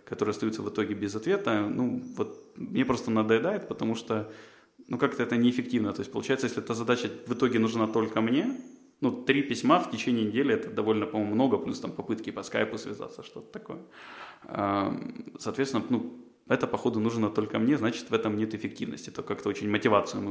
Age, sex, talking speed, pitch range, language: 20-39, male, 185 wpm, 105-125 Hz, Ukrainian